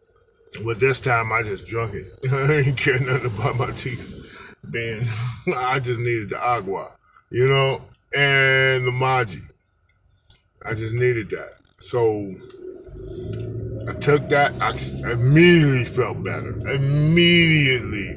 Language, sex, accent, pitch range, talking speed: English, male, American, 105-135 Hz, 125 wpm